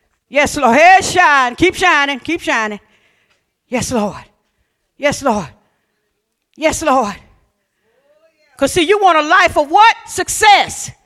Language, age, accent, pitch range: English, 40-59, American, 295-395 Hz